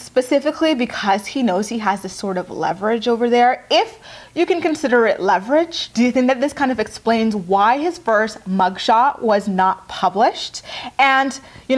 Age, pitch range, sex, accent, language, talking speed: 20-39, 195-255 Hz, female, American, English, 180 wpm